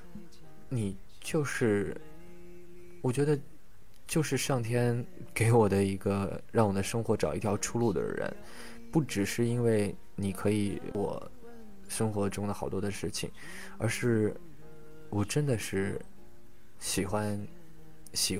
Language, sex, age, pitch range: Chinese, male, 20-39, 95-115 Hz